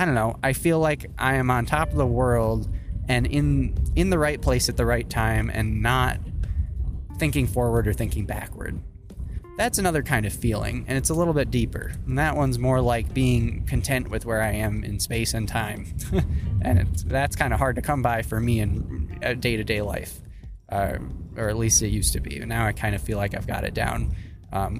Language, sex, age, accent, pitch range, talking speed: English, male, 20-39, American, 95-130 Hz, 220 wpm